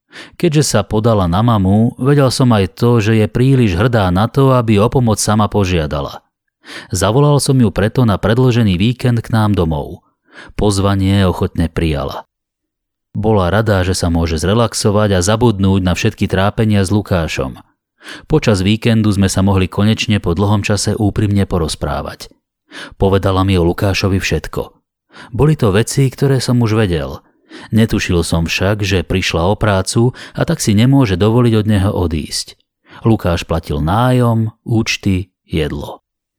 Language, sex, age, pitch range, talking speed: Slovak, male, 30-49, 90-115 Hz, 145 wpm